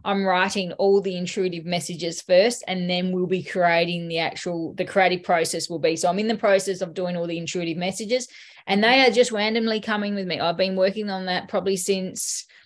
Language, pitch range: English, 180-225 Hz